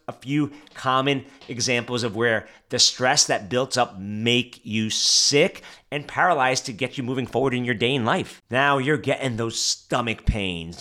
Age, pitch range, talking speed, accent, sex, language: 30-49, 120-155 Hz, 180 wpm, American, male, English